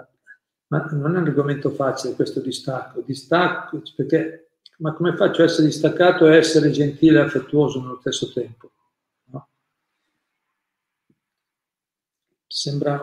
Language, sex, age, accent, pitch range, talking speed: Italian, male, 50-69, native, 130-155 Hz, 120 wpm